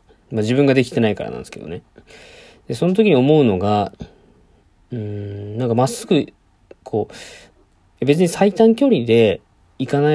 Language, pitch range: Japanese, 105-145 Hz